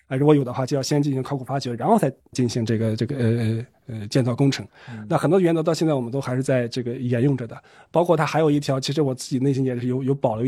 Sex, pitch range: male, 130-160 Hz